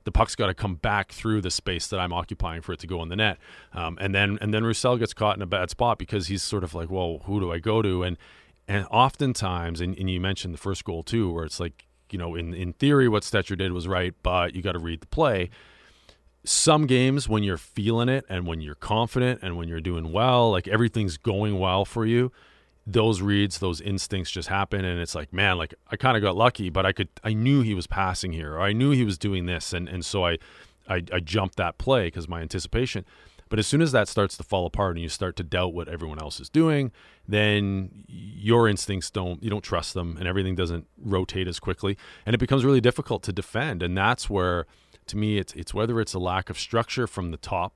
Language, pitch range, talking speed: English, 90-110 Hz, 245 wpm